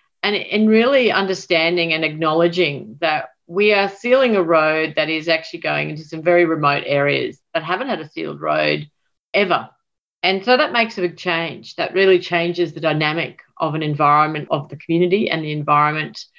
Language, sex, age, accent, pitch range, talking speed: English, female, 40-59, Australian, 155-190 Hz, 180 wpm